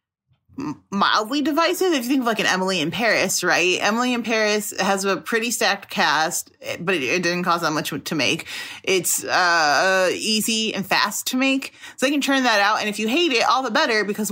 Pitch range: 155-205 Hz